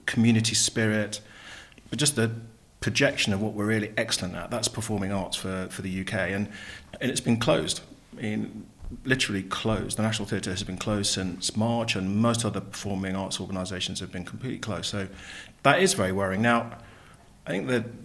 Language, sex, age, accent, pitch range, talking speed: English, male, 40-59, British, 100-115 Hz, 185 wpm